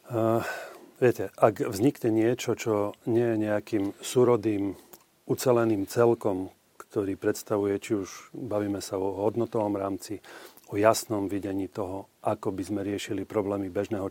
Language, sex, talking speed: Slovak, male, 130 wpm